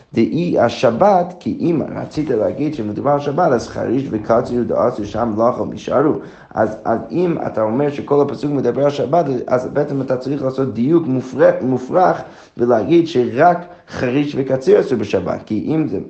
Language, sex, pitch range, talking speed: Hebrew, male, 110-140 Hz, 150 wpm